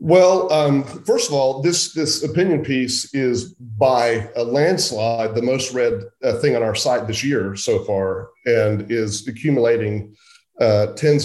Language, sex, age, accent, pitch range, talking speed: English, male, 40-59, American, 110-155 Hz, 160 wpm